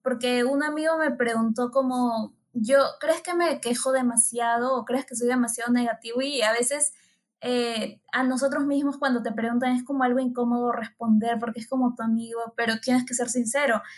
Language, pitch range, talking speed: Spanish, 235-275 Hz, 185 wpm